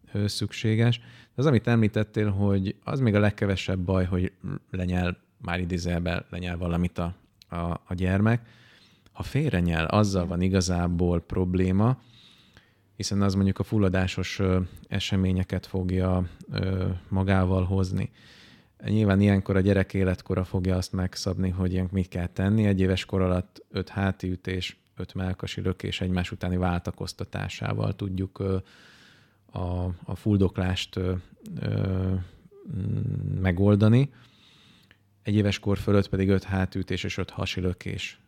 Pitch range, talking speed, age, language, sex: 95-105 Hz, 120 wpm, 20-39, Hungarian, male